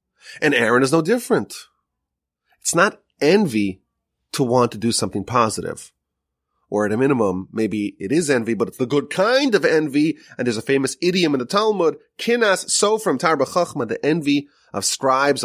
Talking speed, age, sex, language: 175 wpm, 30-49, male, English